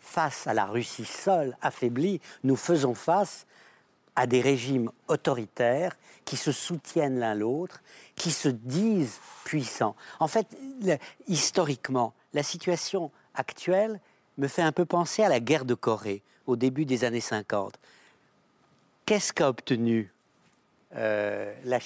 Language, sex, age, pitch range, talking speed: French, male, 60-79, 125-175 Hz, 130 wpm